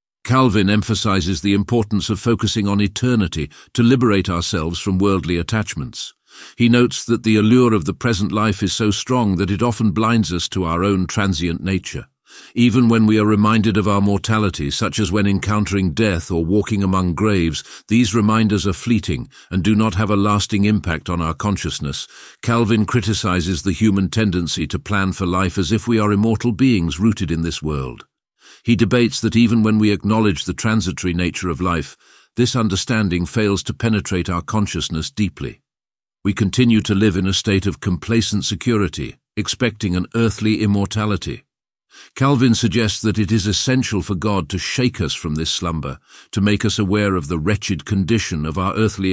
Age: 50-69